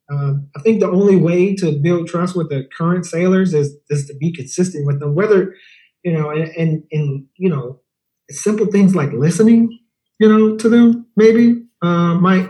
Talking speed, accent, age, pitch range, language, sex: 185 wpm, American, 30-49, 145-185 Hz, English, male